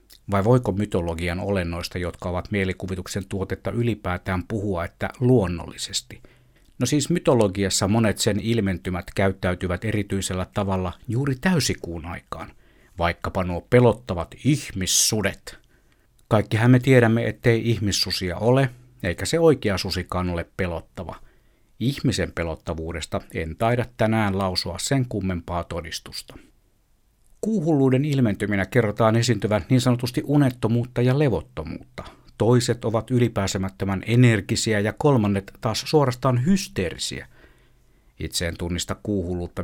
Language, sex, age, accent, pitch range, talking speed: Finnish, male, 60-79, native, 95-120 Hz, 105 wpm